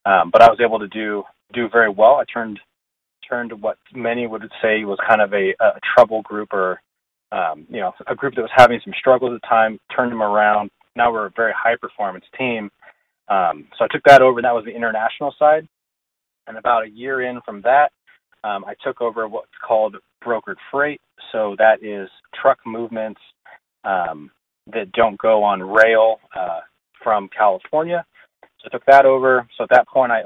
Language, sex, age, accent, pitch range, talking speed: English, male, 30-49, American, 110-125 Hz, 200 wpm